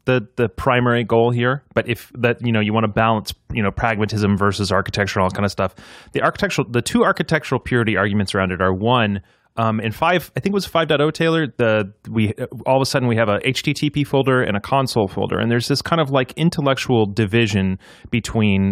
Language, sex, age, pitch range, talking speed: English, male, 30-49, 105-135 Hz, 215 wpm